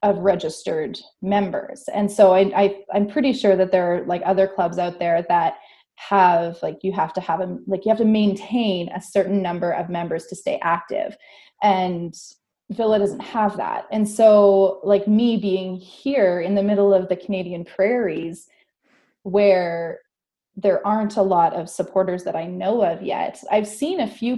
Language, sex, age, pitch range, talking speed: English, female, 20-39, 180-215 Hz, 170 wpm